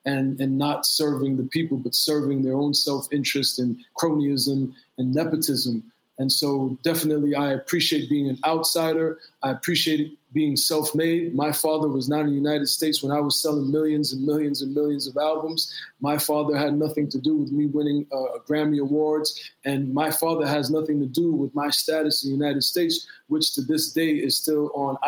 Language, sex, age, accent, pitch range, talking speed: English, male, 20-39, American, 140-155 Hz, 190 wpm